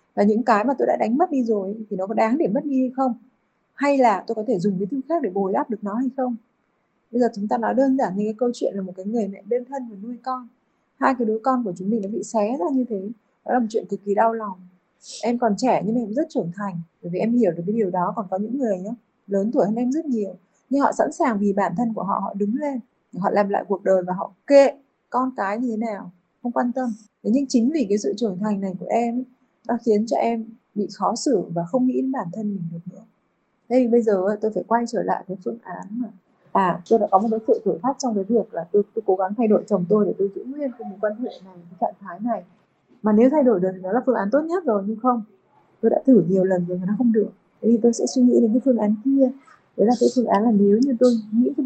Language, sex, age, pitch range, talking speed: Vietnamese, female, 20-39, 200-250 Hz, 295 wpm